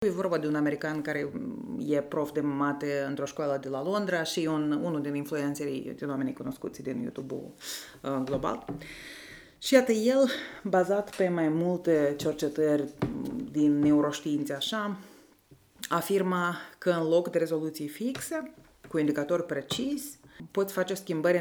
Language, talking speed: Romanian, 140 wpm